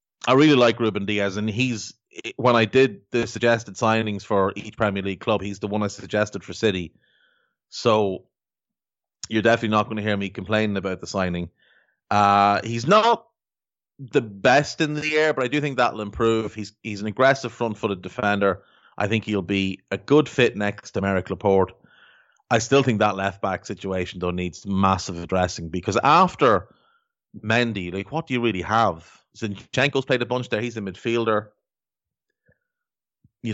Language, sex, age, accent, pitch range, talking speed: English, male, 30-49, Irish, 95-120 Hz, 175 wpm